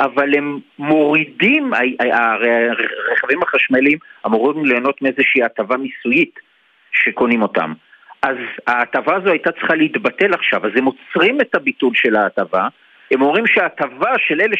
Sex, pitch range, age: male, 140-205 Hz, 50-69